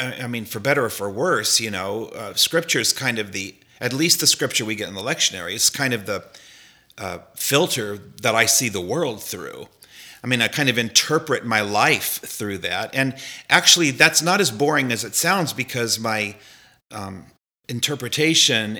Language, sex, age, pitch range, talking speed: English, male, 40-59, 115-145 Hz, 190 wpm